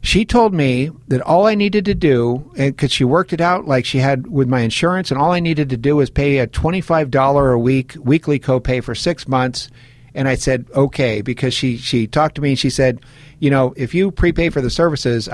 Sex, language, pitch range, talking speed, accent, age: male, English, 125-150 Hz, 225 wpm, American, 50-69